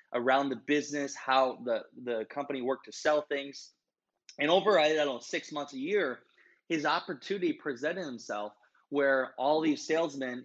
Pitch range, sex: 130-170 Hz, male